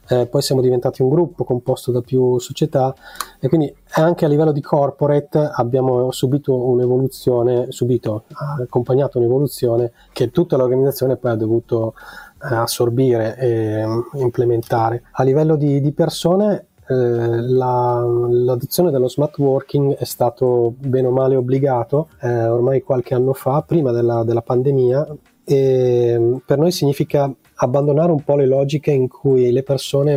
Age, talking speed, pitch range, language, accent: 30-49, 140 wpm, 120-140 Hz, Italian, native